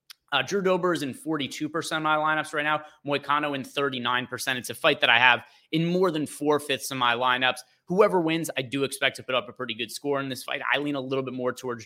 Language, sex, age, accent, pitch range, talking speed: English, male, 30-49, American, 125-170 Hz, 250 wpm